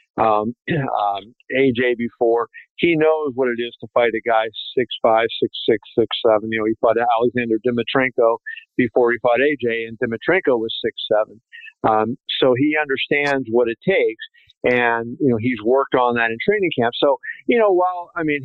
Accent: American